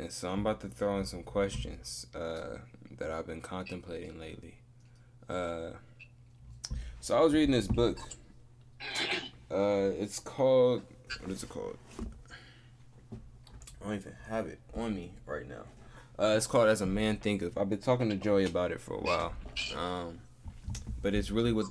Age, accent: 20-39, American